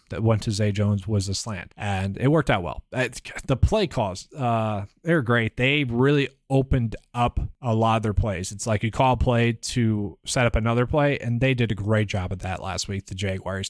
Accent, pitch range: American, 110-140 Hz